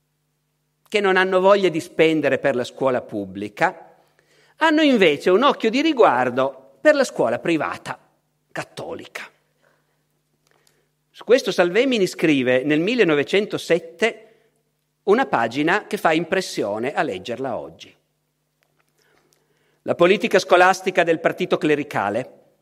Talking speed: 110 wpm